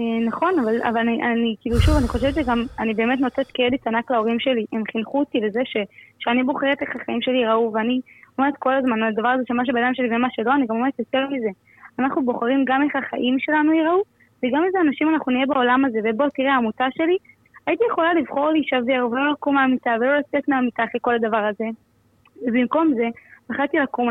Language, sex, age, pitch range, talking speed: Hebrew, female, 20-39, 245-305 Hz, 205 wpm